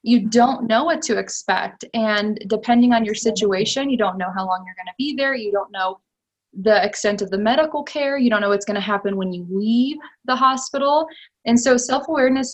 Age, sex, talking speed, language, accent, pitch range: 20-39, female, 215 wpm, English, American, 205-240 Hz